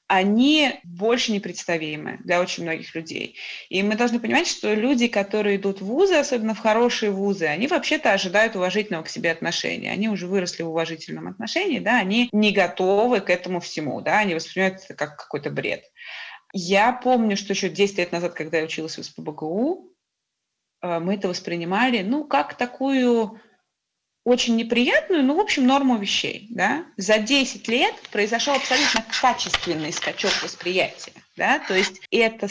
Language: Russian